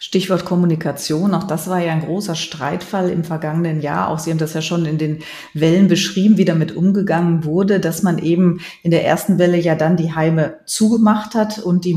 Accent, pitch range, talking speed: German, 165-190 Hz, 205 wpm